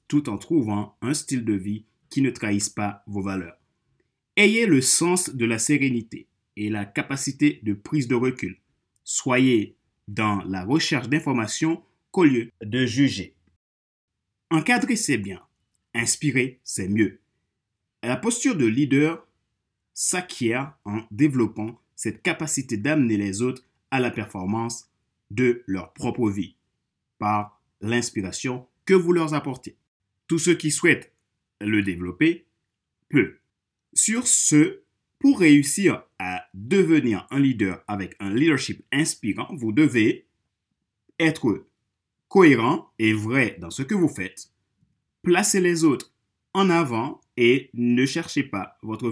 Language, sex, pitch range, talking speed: French, male, 105-150 Hz, 130 wpm